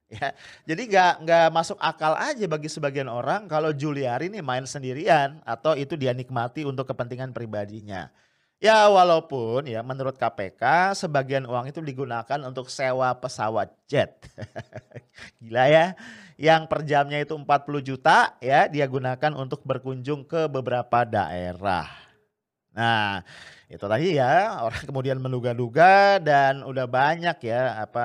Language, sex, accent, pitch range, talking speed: English, male, Indonesian, 120-160 Hz, 135 wpm